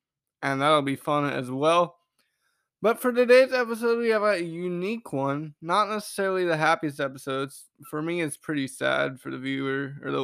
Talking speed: 175 wpm